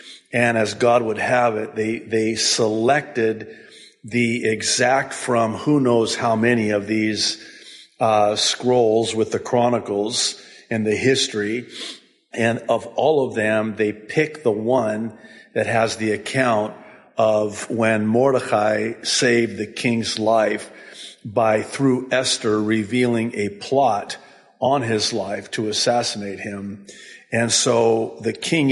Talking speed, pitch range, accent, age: 130 wpm, 110-125 Hz, American, 50-69